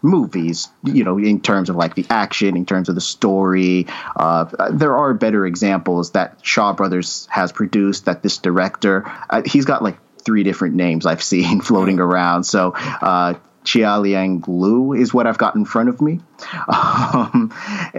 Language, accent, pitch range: English, American, 90-110 Hz